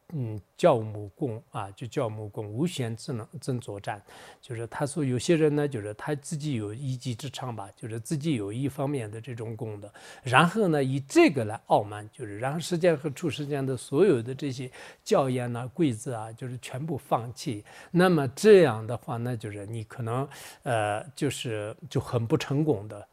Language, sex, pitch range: English, male, 115-150 Hz